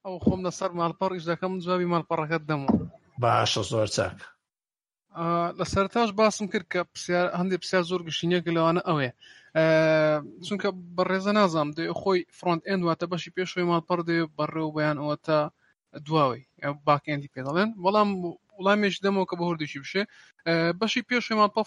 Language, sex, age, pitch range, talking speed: Arabic, male, 20-39, 155-185 Hz, 135 wpm